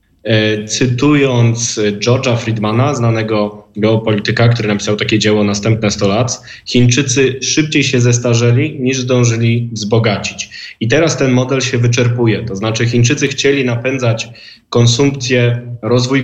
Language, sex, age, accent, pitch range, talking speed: Polish, male, 20-39, native, 115-130 Hz, 120 wpm